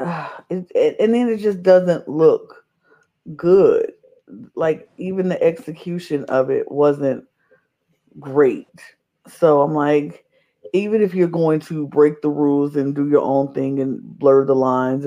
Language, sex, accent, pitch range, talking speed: English, female, American, 145-195 Hz, 140 wpm